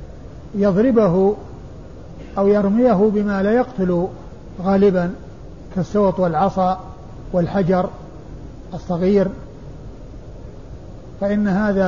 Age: 50-69